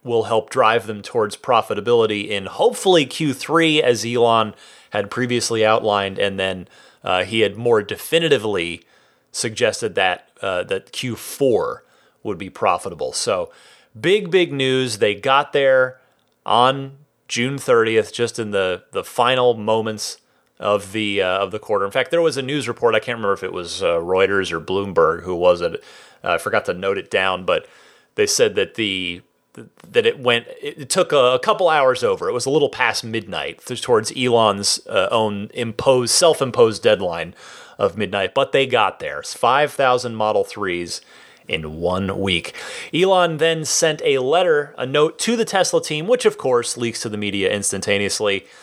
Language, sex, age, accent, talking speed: English, male, 30-49, American, 170 wpm